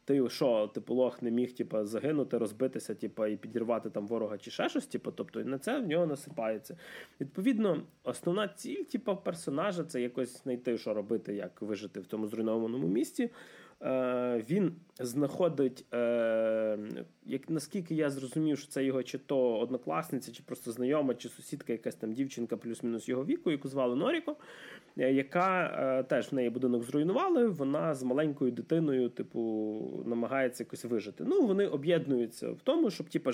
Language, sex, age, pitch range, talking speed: Ukrainian, male, 20-39, 120-165 Hz, 155 wpm